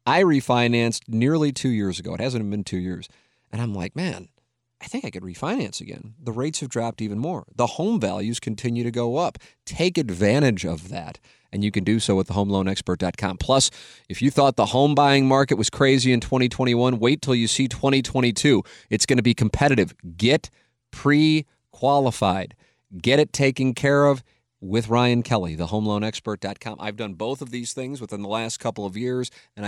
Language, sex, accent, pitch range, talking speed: English, male, American, 110-155 Hz, 185 wpm